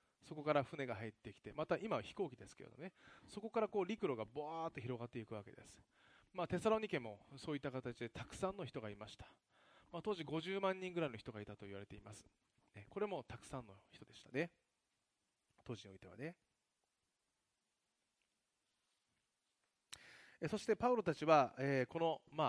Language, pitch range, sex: Japanese, 115-175 Hz, male